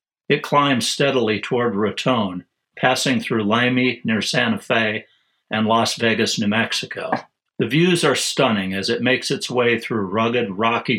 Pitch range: 110-135 Hz